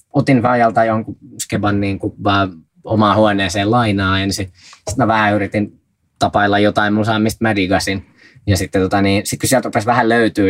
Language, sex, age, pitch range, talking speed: Finnish, male, 20-39, 95-110 Hz, 170 wpm